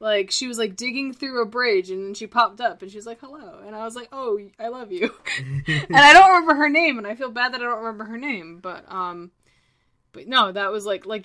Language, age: English, 10-29